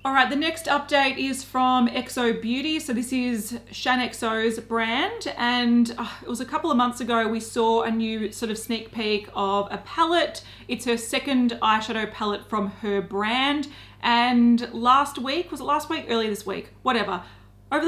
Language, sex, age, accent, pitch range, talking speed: English, female, 30-49, Australian, 220-265 Hz, 180 wpm